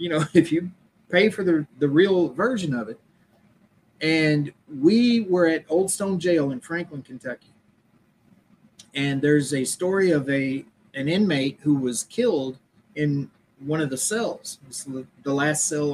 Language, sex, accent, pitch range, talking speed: English, male, American, 140-180 Hz, 160 wpm